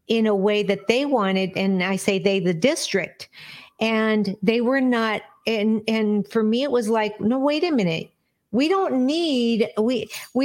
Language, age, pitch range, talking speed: English, 50-69, 195-235 Hz, 180 wpm